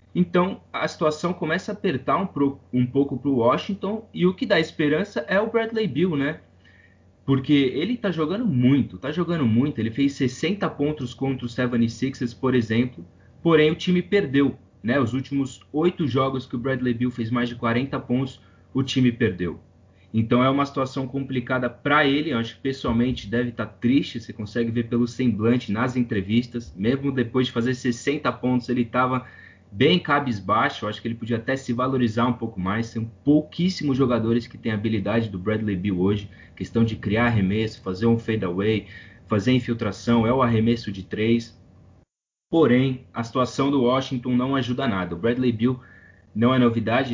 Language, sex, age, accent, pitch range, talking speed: Portuguese, male, 20-39, Brazilian, 110-140 Hz, 180 wpm